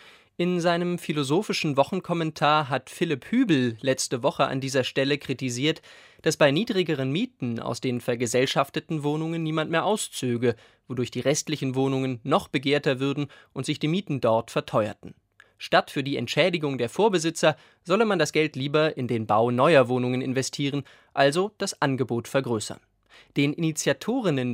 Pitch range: 125-160 Hz